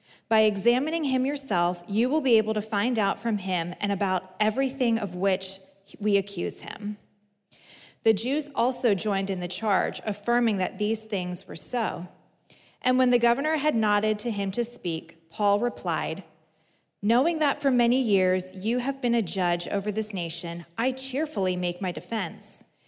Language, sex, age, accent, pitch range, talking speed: English, female, 20-39, American, 185-235 Hz, 170 wpm